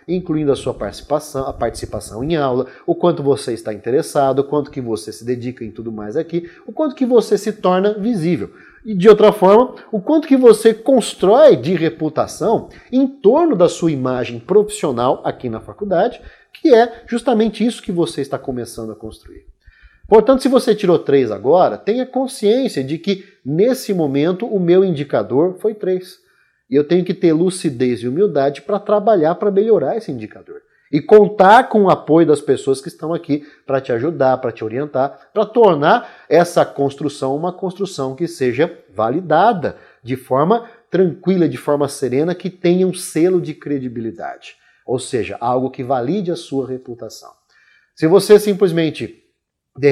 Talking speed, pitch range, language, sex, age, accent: 170 wpm, 135-210 Hz, Portuguese, male, 30-49, Brazilian